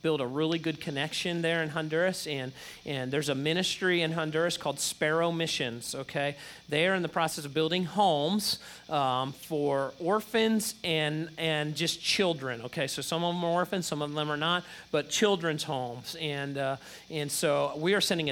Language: English